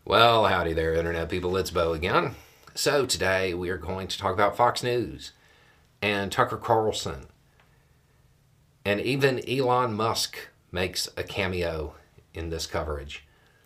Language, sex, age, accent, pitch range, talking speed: English, male, 50-69, American, 80-100 Hz, 135 wpm